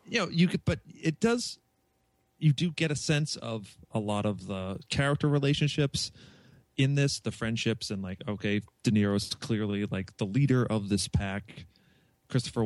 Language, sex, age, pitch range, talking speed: English, male, 30-49, 95-140 Hz, 170 wpm